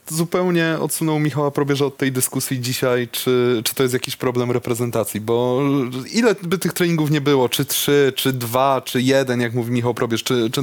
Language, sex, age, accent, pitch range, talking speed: Polish, male, 20-39, native, 125-160 Hz, 190 wpm